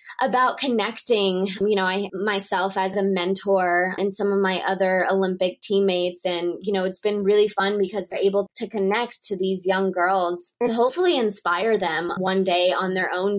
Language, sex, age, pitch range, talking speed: English, female, 20-39, 185-220 Hz, 180 wpm